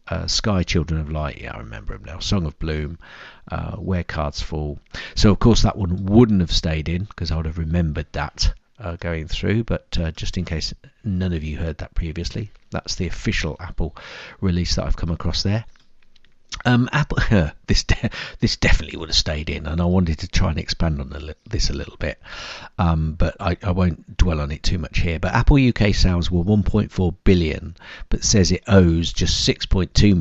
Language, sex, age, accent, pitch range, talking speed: English, male, 50-69, British, 80-100 Hz, 200 wpm